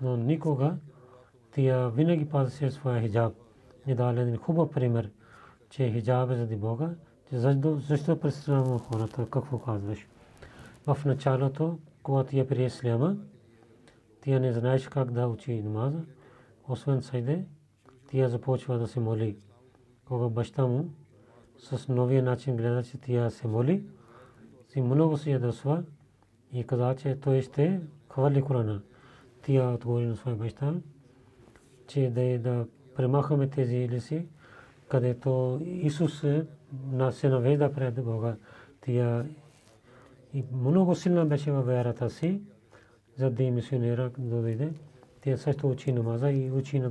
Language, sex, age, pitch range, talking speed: Bulgarian, male, 40-59, 120-140 Hz, 130 wpm